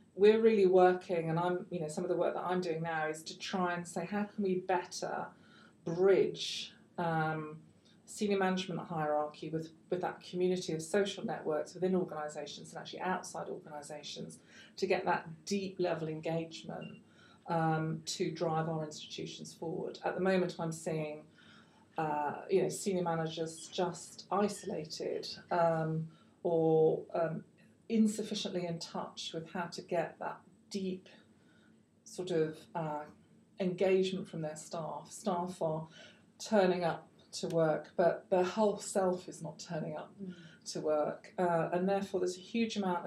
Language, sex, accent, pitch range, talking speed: English, female, British, 160-190 Hz, 150 wpm